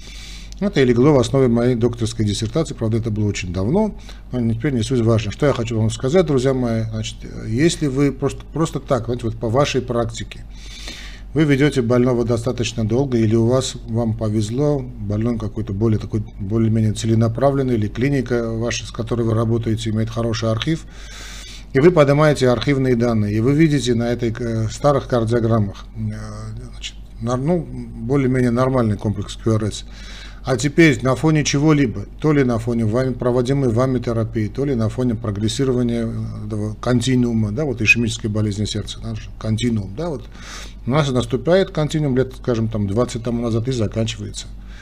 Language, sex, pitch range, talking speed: Russian, male, 110-130 Hz, 160 wpm